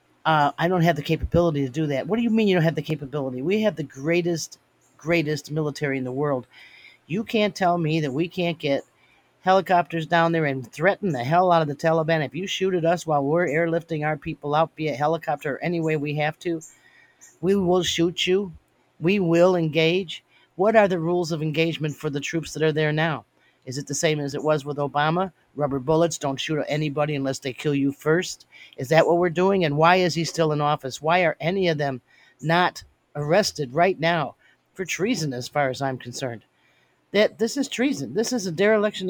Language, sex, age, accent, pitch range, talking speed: English, male, 40-59, American, 145-180 Hz, 215 wpm